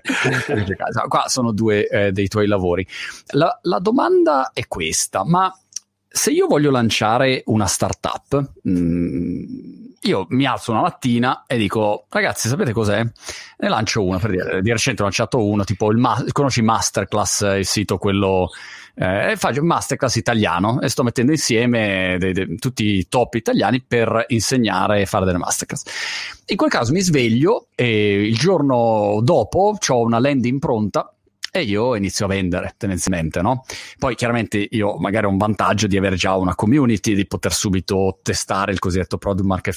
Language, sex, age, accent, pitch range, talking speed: Italian, male, 30-49, native, 100-135 Hz, 165 wpm